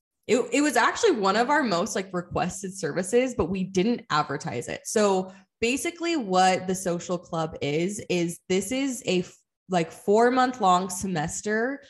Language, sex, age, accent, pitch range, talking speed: English, female, 20-39, American, 175-220 Hz, 160 wpm